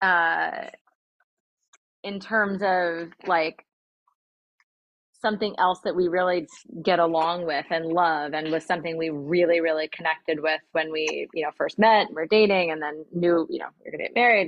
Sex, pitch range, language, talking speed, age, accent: female, 160-180 Hz, English, 170 wpm, 30-49, American